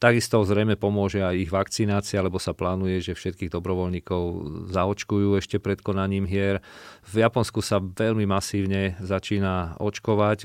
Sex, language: male, Slovak